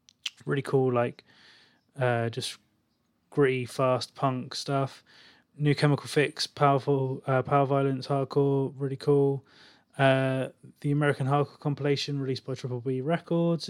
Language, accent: English, British